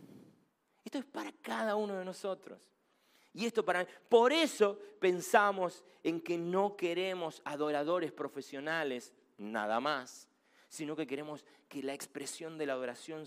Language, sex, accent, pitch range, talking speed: Spanish, male, Argentinian, 155-220 Hz, 135 wpm